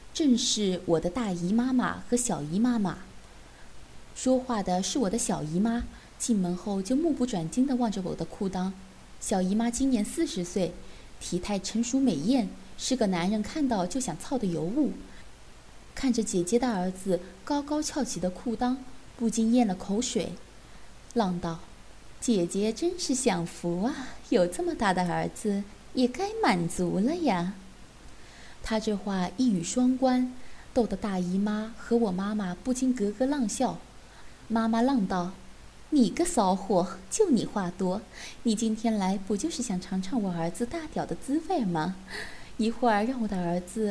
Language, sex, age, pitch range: Chinese, female, 20-39, 185-255 Hz